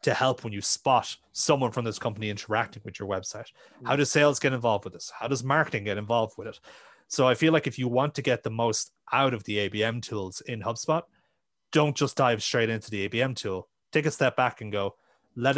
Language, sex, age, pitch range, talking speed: English, male, 30-49, 105-130 Hz, 230 wpm